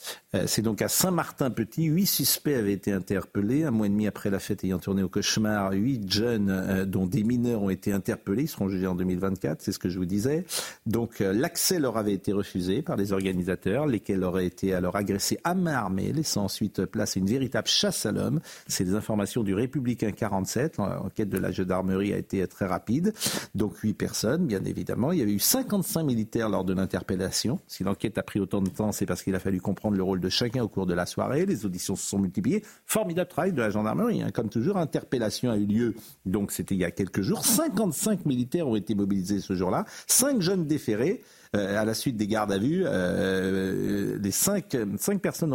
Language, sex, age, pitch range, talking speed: French, male, 50-69, 95-155 Hz, 215 wpm